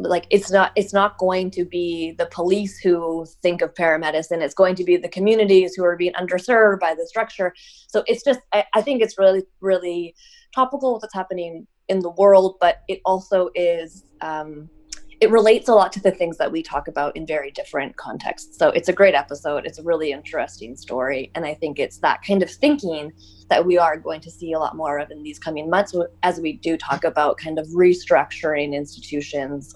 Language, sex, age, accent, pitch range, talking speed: English, female, 20-39, American, 165-200 Hz, 210 wpm